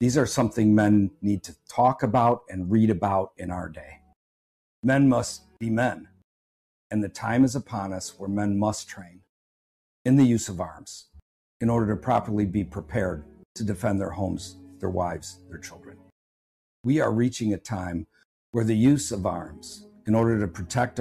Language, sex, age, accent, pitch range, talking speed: English, male, 50-69, American, 90-115 Hz, 175 wpm